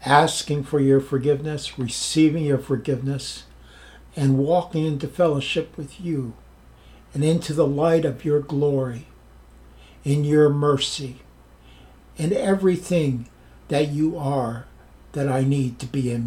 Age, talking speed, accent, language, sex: 60-79, 125 wpm, American, English, male